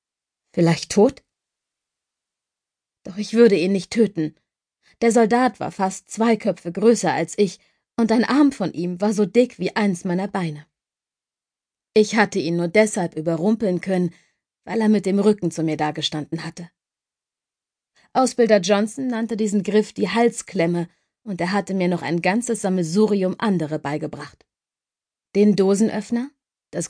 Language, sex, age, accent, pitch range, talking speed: German, female, 30-49, German, 170-220 Hz, 145 wpm